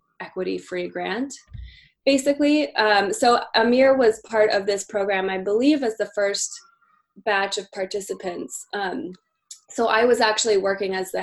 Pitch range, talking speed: 190-225 Hz, 145 wpm